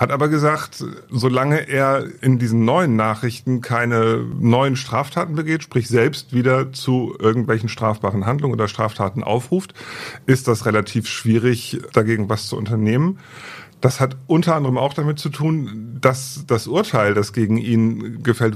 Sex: male